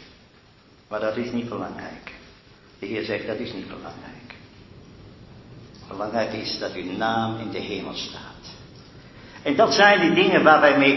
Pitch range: 115-140 Hz